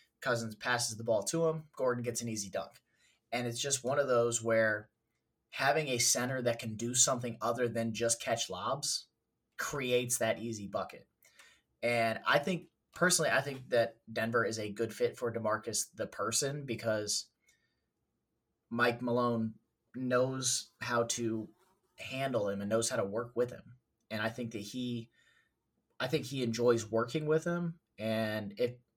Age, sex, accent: 20-39, male, American